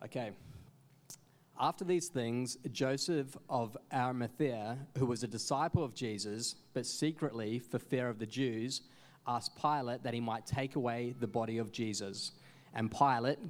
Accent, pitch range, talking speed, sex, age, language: Australian, 115-145 Hz, 145 wpm, male, 20-39, English